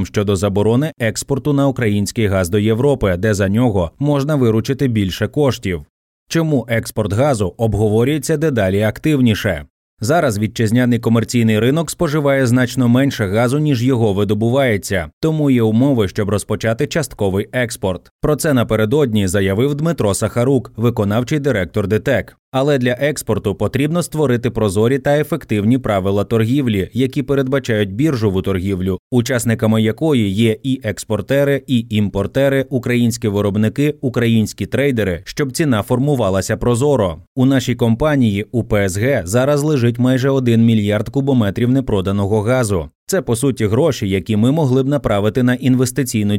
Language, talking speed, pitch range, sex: Ukrainian, 130 wpm, 105-135 Hz, male